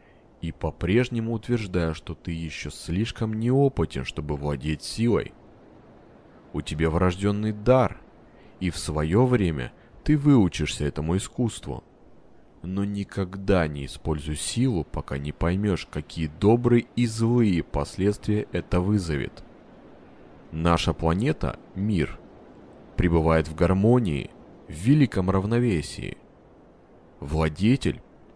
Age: 30-49